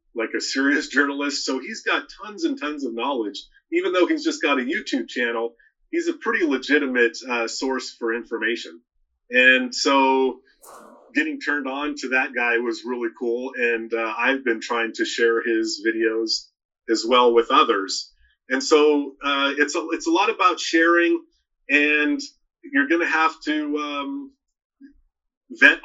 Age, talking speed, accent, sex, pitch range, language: 30-49, 160 wpm, American, male, 120-165 Hz, English